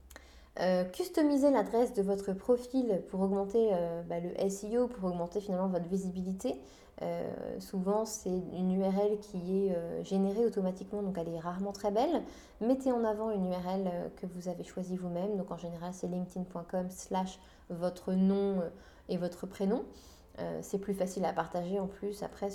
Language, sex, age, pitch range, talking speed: French, female, 20-39, 180-220 Hz, 165 wpm